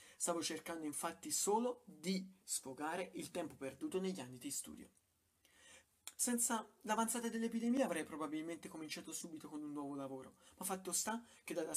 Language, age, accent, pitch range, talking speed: Italian, 30-49, native, 155-205 Hz, 150 wpm